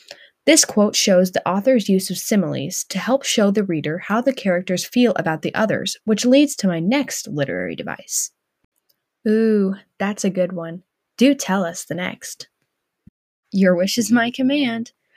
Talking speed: 165 wpm